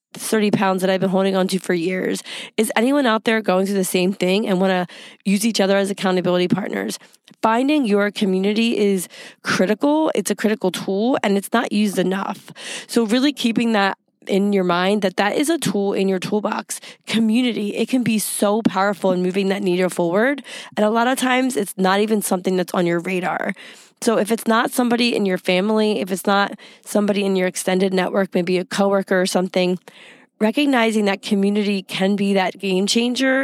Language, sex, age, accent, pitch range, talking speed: English, female, 20-39, American, 190-225 Hz, 195 wpm